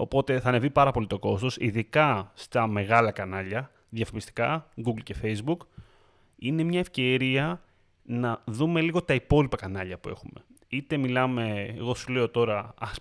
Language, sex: Greek, male